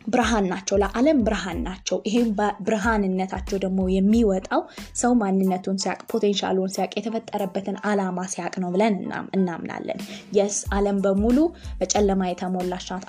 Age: 20-39